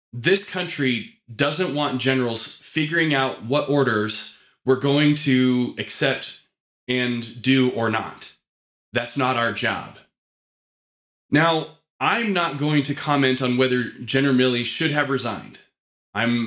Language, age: English, 20-39